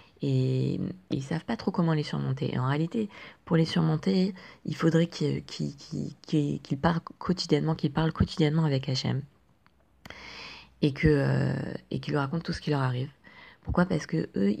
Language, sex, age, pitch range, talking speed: French, female, 20-39, 130-165 Hz, 180 wpm